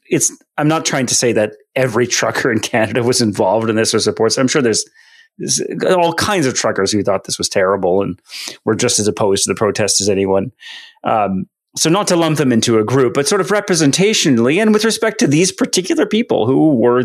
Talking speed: 220 wpm